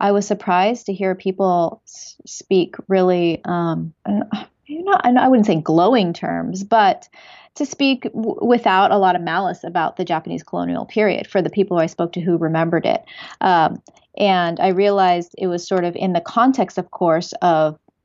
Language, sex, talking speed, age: English, female, 180 wpm, 30-49